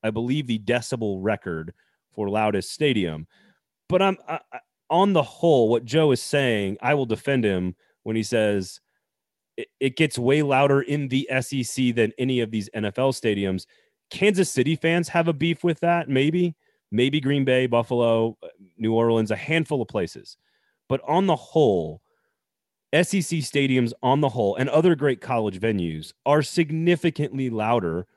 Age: 30-49